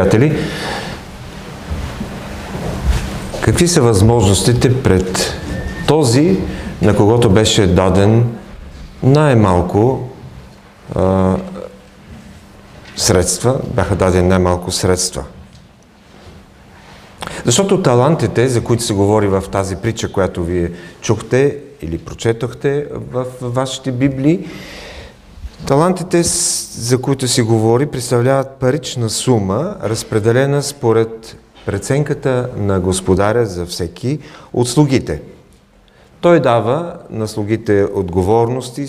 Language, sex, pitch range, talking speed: English, male, 100-135 Hz, 90 wpm